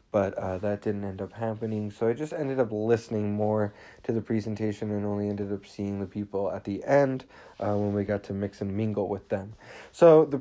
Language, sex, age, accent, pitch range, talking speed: English, male, 30-49, American, 105-135 Hz, 225 wpm